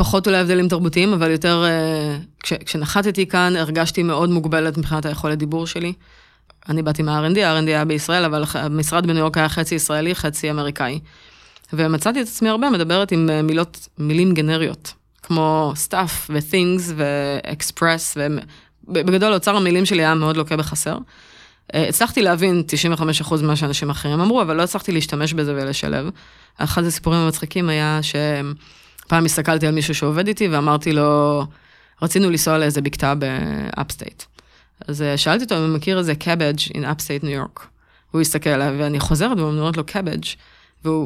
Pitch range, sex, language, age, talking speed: 150-175 Hz, female, Hebrew, 20-39, 150 wpm